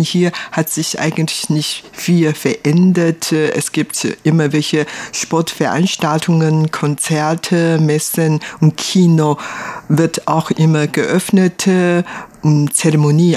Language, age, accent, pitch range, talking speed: German, 50-69, German, 145-170 Hz, 95 wpm